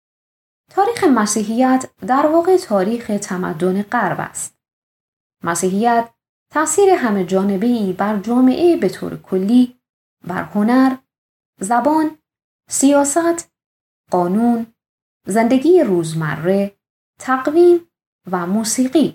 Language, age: Persian, 20-39